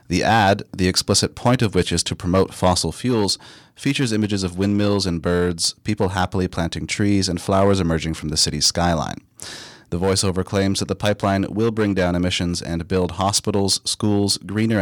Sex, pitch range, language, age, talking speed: male, 85-105 Hz, English, 30-49, 180 wpm